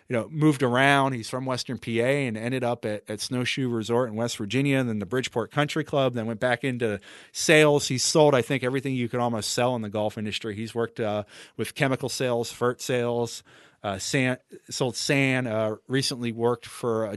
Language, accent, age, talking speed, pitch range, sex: English, American, 30-49, 205 wpm, 110-130 Hz, male